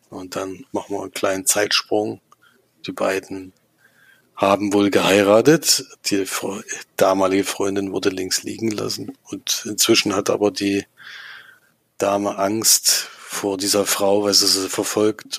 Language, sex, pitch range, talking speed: German, male, 100-110 Hz, 130 wpm